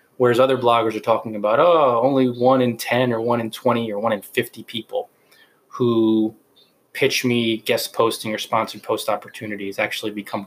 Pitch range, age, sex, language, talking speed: 110-130 Hz, 20-39, male, English, 180 wpm